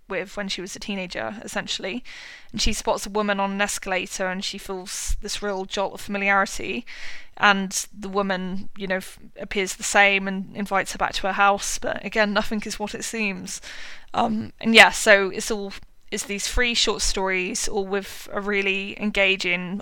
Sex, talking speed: female, 185 wpm